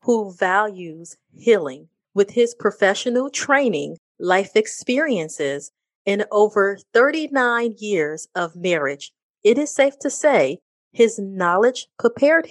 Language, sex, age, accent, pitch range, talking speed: English, female, 30-49, American, 175-240 Hz, 110 wpm